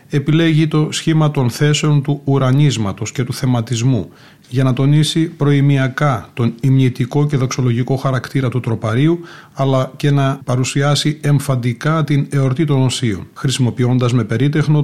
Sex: male